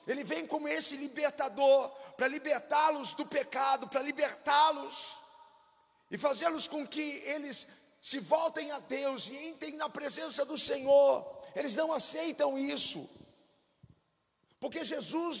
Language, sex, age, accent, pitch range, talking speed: Portuguese, male, 50-69, Brazilian, 290-330 Hz, 125 wpm